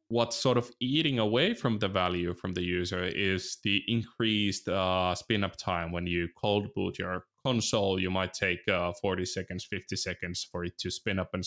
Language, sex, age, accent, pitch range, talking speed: English, male, 20-39, Finnish, 95-125 Hz, 195 wpm